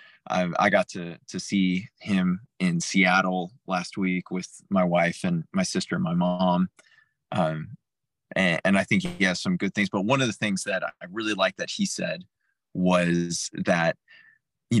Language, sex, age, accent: English, male, 20-39, American